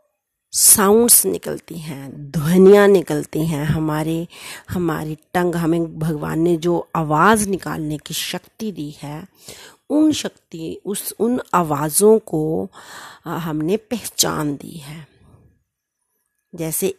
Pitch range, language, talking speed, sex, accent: 155-200 Hz, Hindi, 105 wpm, female, native